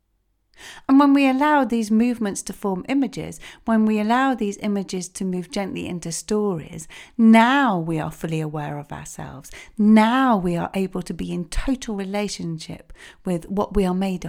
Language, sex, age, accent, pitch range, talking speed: English, female, 40-59, British, 165-230 Hz, 170 wpm